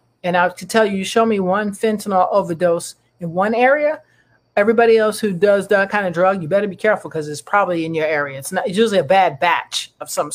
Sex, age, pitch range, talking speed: male, 40-59, 170-220 Hz, 245 wpm